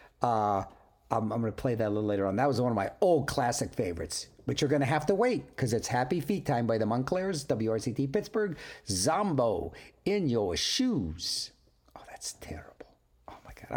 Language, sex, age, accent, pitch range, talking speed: English, male, 60-79, American, 105-165 Hz, 200 wpm